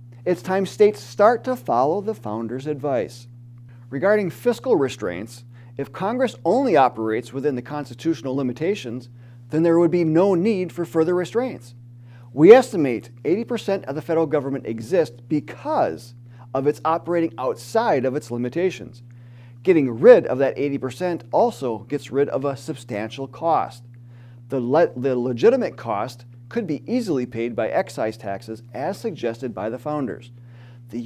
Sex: male